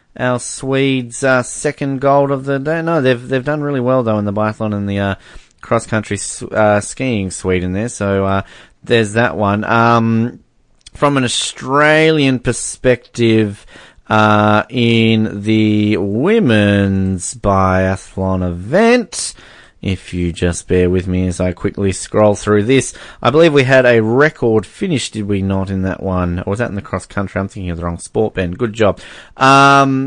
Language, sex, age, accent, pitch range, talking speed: English, male, 30-49, Australian, 95-120 Hz, 170 wpm